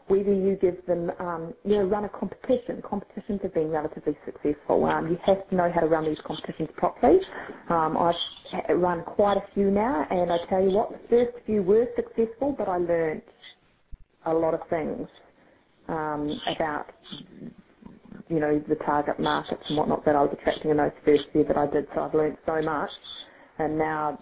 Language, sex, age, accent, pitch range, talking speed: English, female, 30-49, Australian, 155-205 Hz, 190 wpm